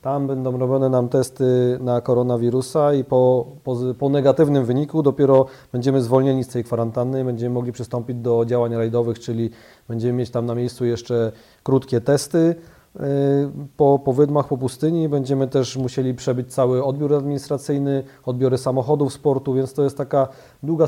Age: 30-49